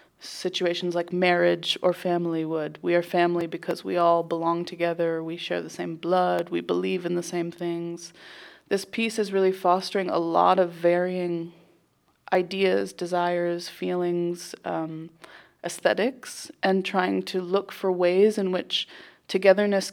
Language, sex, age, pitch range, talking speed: French, female, 20-39, 170-185 Hz, 145 wpm